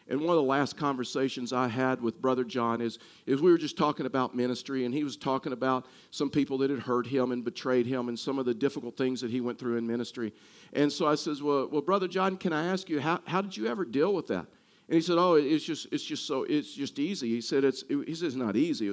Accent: American